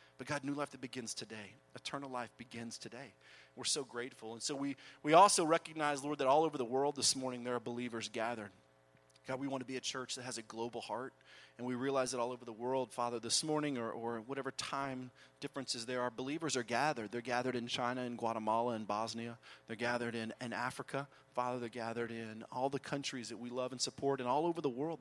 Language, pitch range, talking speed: English, 110-130 Hz, 230 wpm